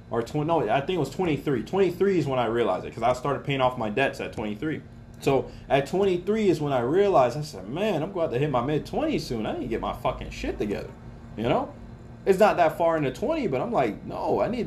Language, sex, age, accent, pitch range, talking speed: English, male, 20-39, American, 120-160 Hz, 255 wpm